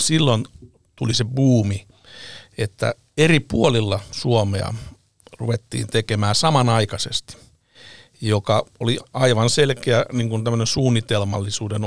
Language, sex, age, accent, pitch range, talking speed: Finnish, male, 60-79, native, 105-125 Hz, 80 wpm